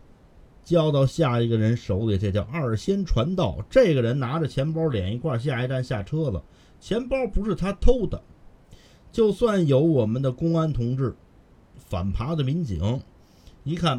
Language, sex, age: Chinese, male, 50-69